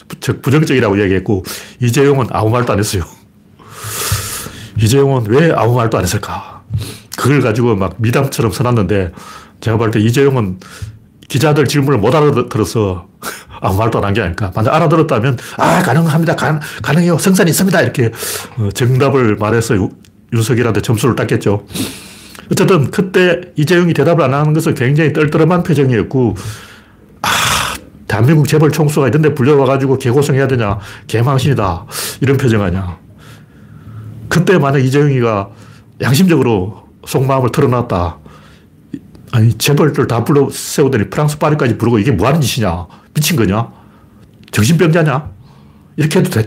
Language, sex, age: Korean, male, 40-59